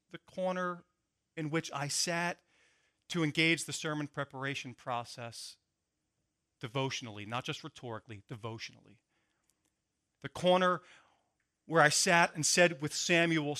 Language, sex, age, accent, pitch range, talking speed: English, male, 40-59, American, 145-190 Hz, 115 wpm